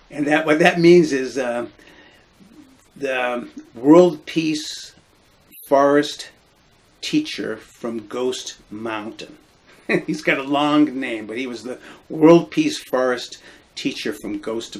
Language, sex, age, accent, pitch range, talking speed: English, male, 50-69, American, 115-150 Hz, 125 wpm